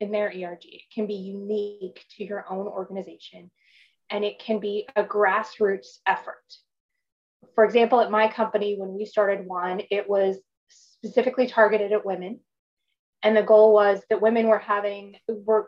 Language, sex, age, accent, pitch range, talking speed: English, female, 20-39, American, 200-230 Hz, 160 wpm